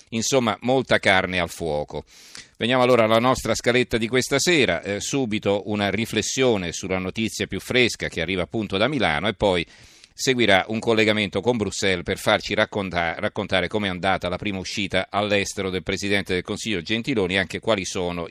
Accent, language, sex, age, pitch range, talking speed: native, Italian, male, 40-59, 90-110 Hz, 170 wpm